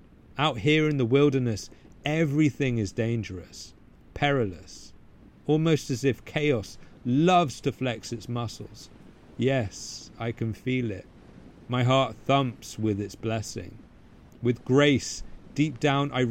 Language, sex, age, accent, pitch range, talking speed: English, male, 40-59, British, 110-145 Hz, 125 wpm